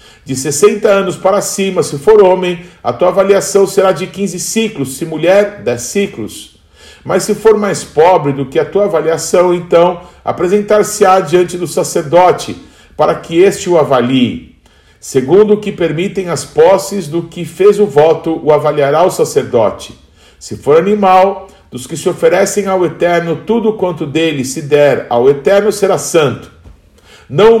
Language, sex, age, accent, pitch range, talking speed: Portuguese, male, 50-69, Brazilian, 155-200 Hz, 160 wpm